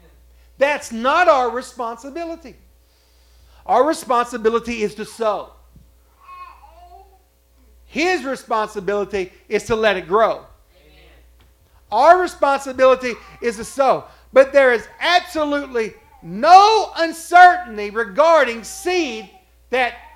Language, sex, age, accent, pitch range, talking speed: English, male, 50-69, American, 210-285 Hz, 90 wpm